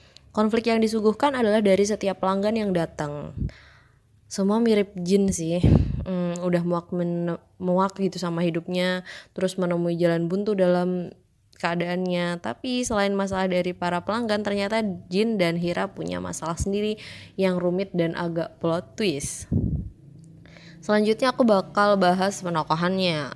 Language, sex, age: Indonesian, female, 20-39